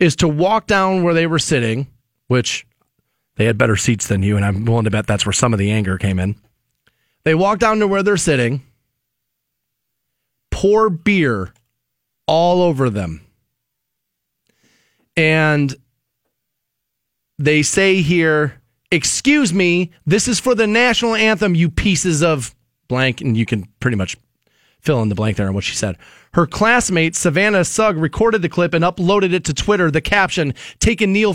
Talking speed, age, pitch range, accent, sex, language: 165 wpm, 30-49, 125-190 Hz, American, male, English